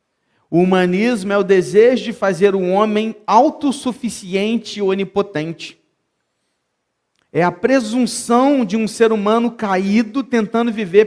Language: Portuguese